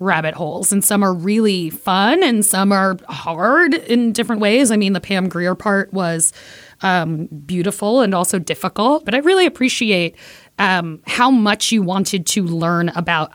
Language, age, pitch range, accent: English, 30-49, 175-225 Hz, American